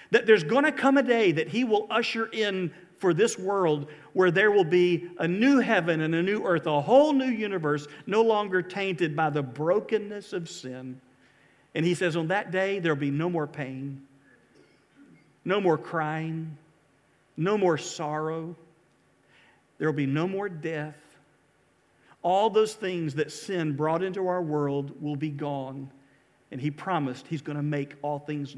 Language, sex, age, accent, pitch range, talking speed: English, male, 50-69, American, 145-180 Hz, 175 wpm